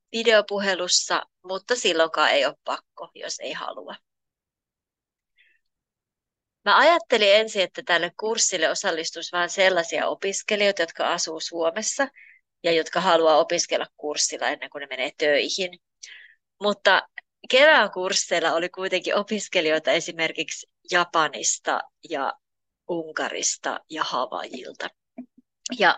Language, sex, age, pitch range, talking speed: Finnish, female, 30-49, 165-215 Hz, 105 wpm